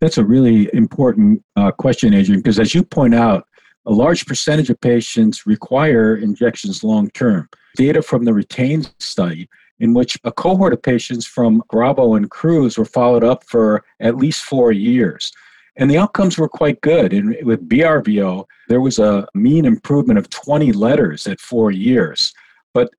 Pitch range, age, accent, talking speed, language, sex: 115-185 Hz, 50-69, American, 165 wpm, English, male